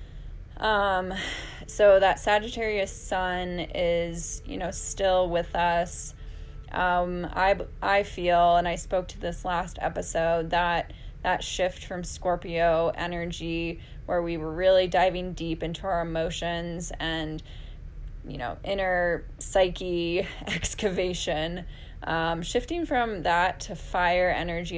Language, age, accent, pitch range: English, 10-29, American, 165-195 Hz